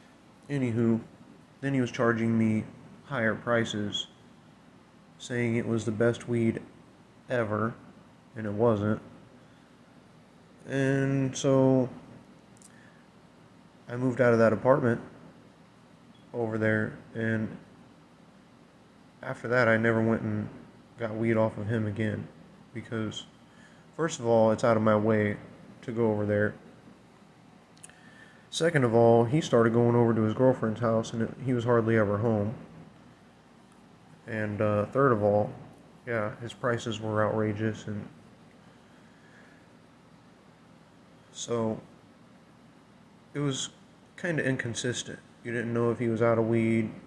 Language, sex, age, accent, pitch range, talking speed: English, male, 30-49, American, 110-125 Hz, 125 wpm